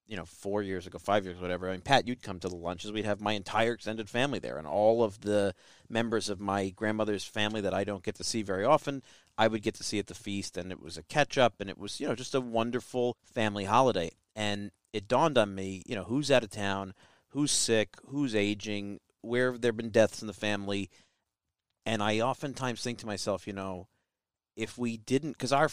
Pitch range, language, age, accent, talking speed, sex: 100-125 Hz, English, 40-59, American, 230 wpm, male